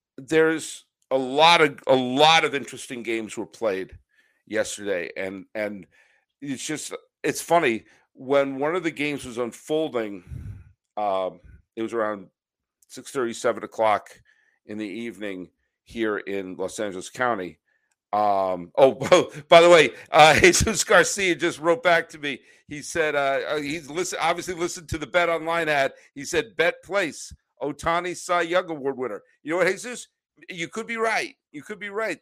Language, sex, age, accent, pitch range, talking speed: English, male, 50-69, American, 120-170 Hz, 165 wpm